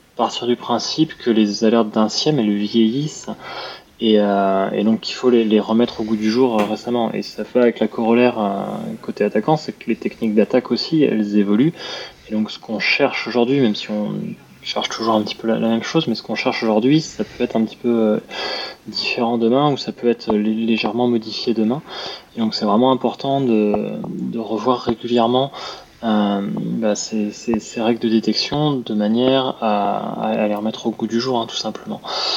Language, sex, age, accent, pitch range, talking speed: French, male, 20-39, French, 110-125 Hz, 210 wpm